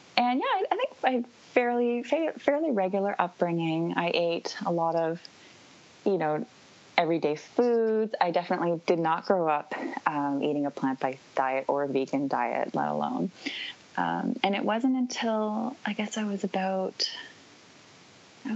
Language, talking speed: English, 150 wpm